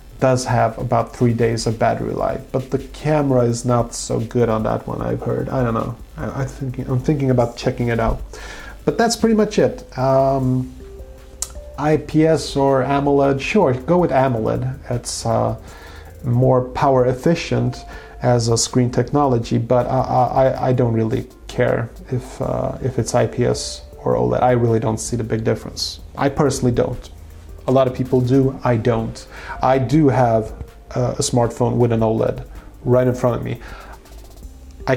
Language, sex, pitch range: English, male, 115-135 Hz